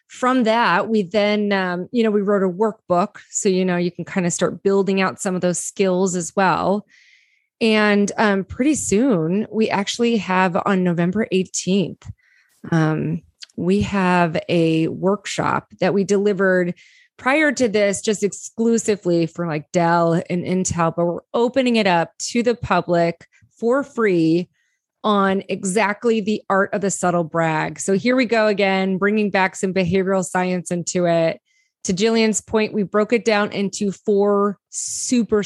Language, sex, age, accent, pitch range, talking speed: English, female, 30-49, American, 180-220 Hz, 160 wpm